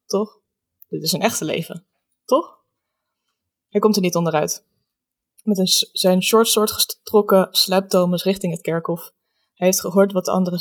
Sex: female